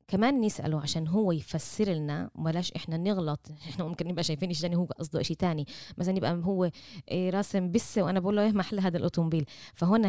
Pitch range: 165-225 Hz